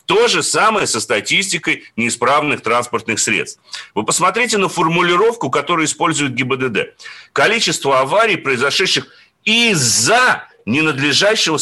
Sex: male